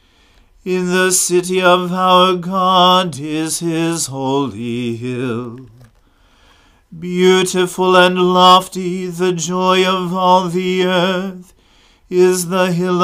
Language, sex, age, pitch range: English, male, 40-59, 155-185 Hz